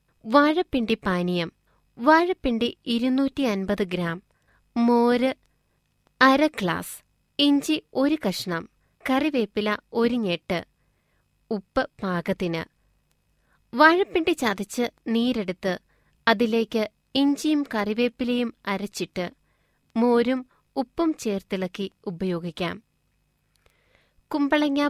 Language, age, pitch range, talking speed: Malayalam, 20-39, 195-270 Hz, 65 wpm